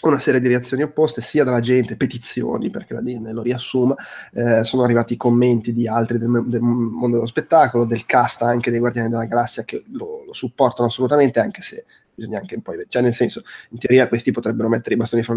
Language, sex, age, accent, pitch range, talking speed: Italian, male, 20-39, native, 120-135 Hz, 215 wpm